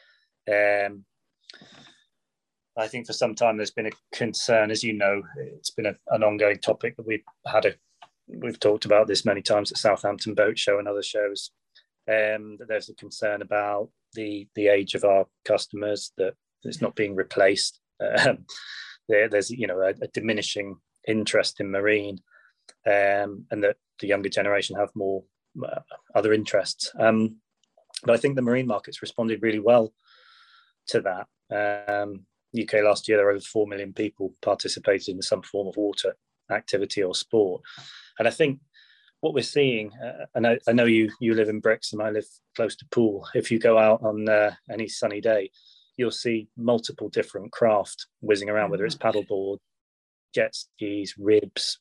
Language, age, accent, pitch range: English, 30-49, British, 100-115 Hz